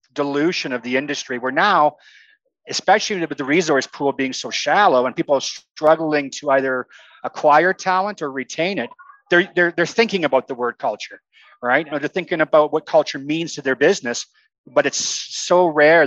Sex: male